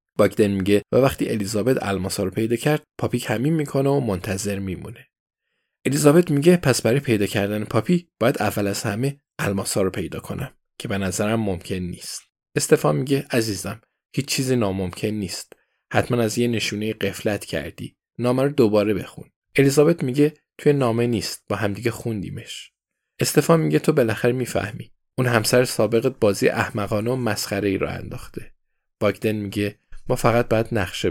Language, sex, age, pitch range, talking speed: Persian, male, 20-39, 100-125 Hz, 145 wpm